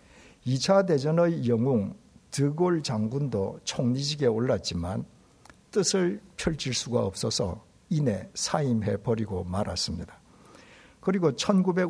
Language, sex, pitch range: Korean, male, 105-155 Hz